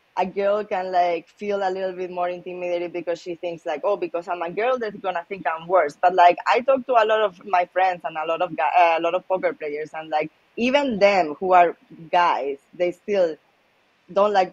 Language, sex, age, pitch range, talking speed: English, female, 20-39, 165-190 Hz, 230 wpm